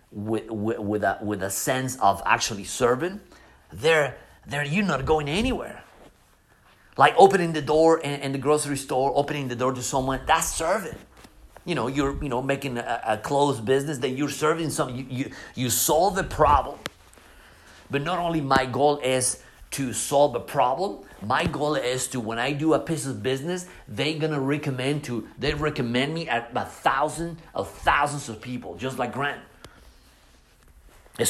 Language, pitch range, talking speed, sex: English, 115-145 Hz, 175 wpm, male